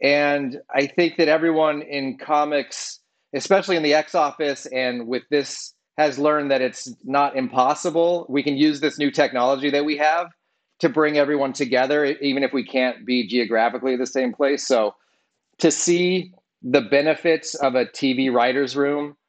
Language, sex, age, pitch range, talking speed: English, male, 30-49, 125-150 Hz, 165 wpm